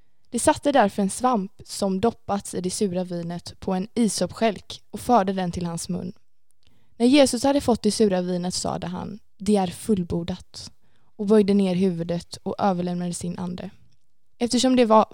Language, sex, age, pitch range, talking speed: Swedish, female, 20-39, 185-235 Hz, 170 wpm